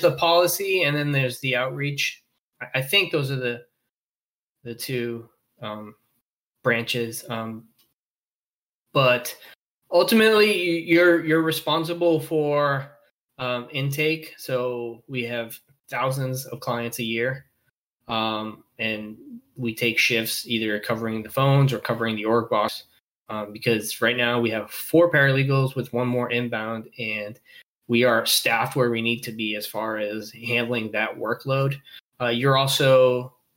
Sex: male